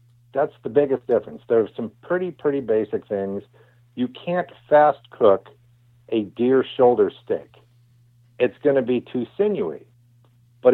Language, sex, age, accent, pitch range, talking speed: English, male, 50-69, American, 120-140 Hz, 145 wpm